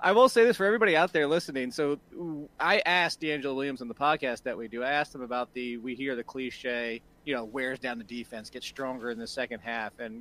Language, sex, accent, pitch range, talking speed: English, male, American, 125-160 Hz, 245 wpm